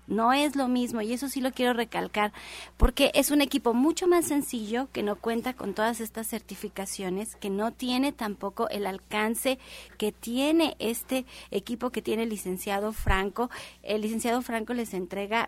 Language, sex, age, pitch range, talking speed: Spanish, female, 30-49, 205-255 Hz, 170 wpm